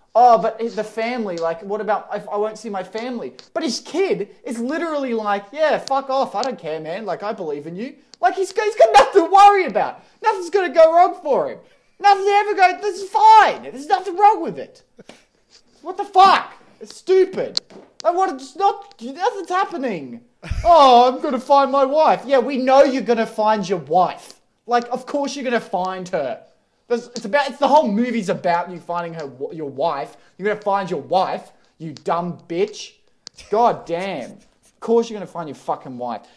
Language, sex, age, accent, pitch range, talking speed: English, male, 20-39, Australian, 195-320 Hz, 195 wpm